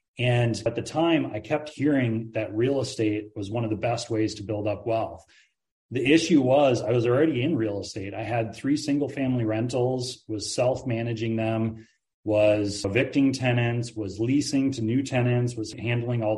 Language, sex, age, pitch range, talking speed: English, male, 30-49, 105-125 Hz, 180 wpm